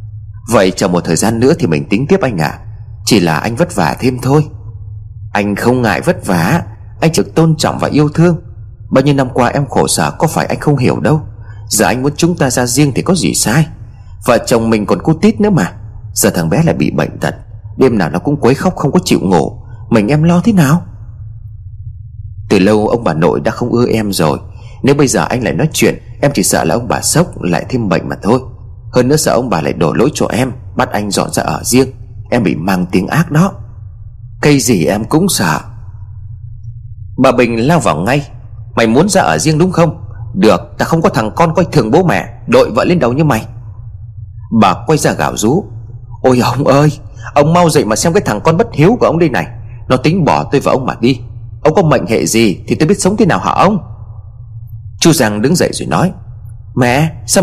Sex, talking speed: male, 230 wpm